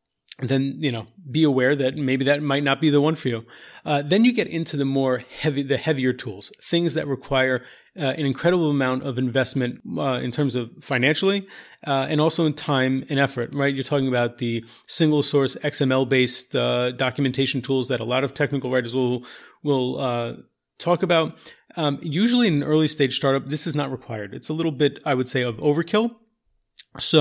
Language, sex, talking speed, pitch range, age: English, male, 200 wpm, 130-155 Hz, 30-49